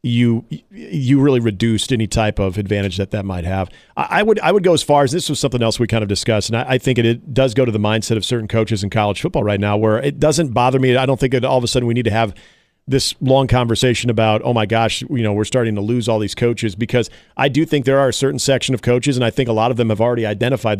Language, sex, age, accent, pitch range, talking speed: English, male, 40-59, American, 110-135 Hz, 295 wpm